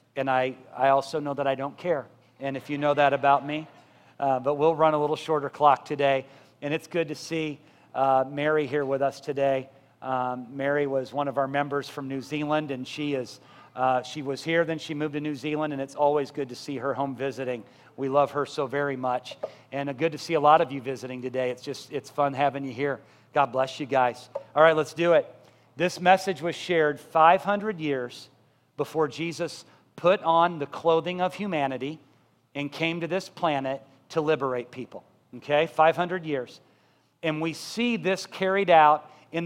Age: 40-59